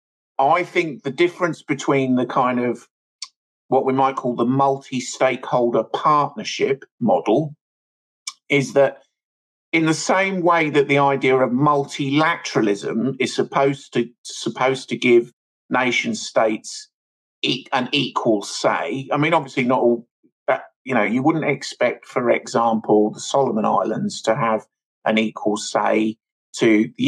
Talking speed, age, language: 135 wpm, 50-69, English